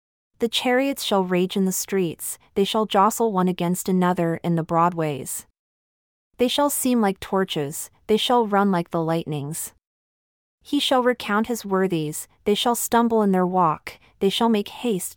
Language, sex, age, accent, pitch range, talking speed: English, female, 30-49, American, 170-220 Hz, 165 wpm